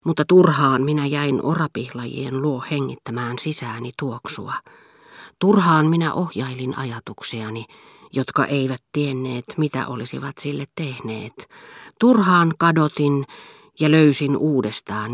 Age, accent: 40-59, native